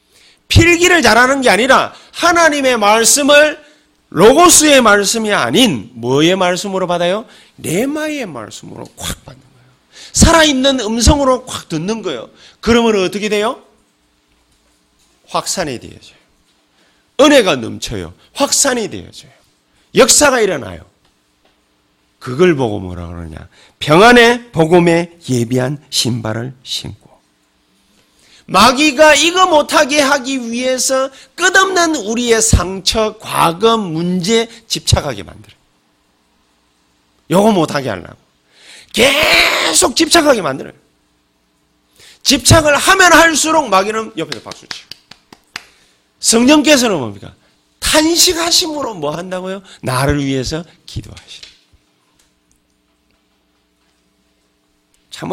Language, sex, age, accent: Korean, male, 40-59, native